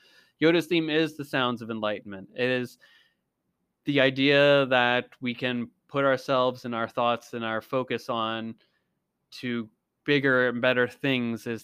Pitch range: 120-140 Hz